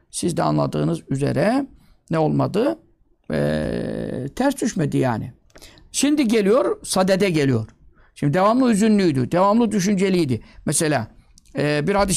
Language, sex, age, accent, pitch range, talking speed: Turkish, male, 60-79, native, 155-200 Hz, 115 wpm